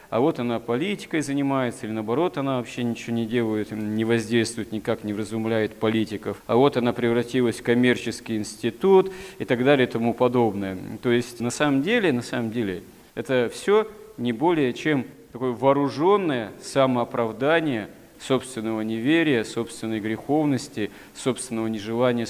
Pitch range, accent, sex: 110-130 Hz, native, male